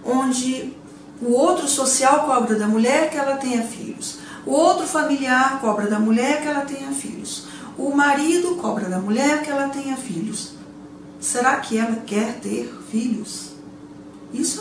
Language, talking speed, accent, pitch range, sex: Portuguese, 150 wpm, Brazilian, 195-280 Hz, female